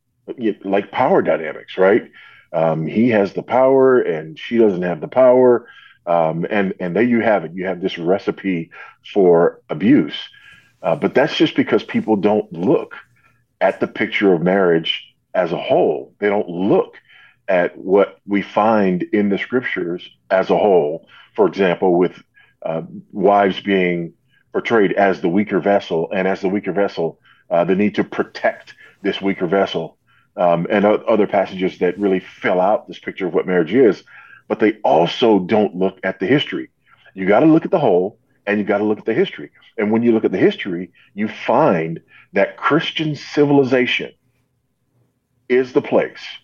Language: English